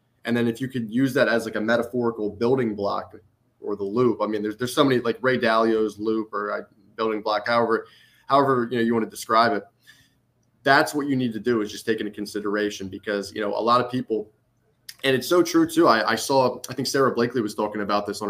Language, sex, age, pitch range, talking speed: English, male, 20-39, 110-130 Hz, 245 wpm